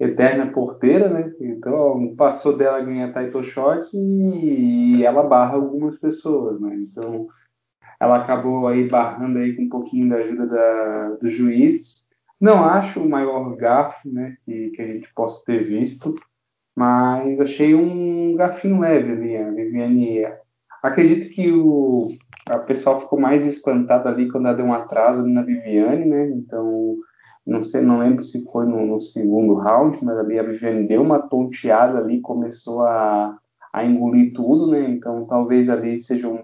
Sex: male